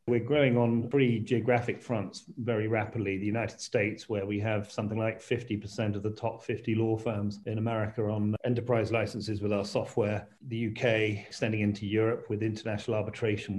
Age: 40-59